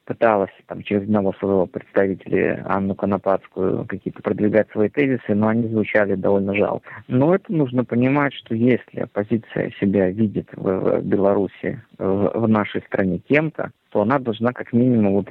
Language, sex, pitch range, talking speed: Russian, male, 100-125 Hz, 155 wpm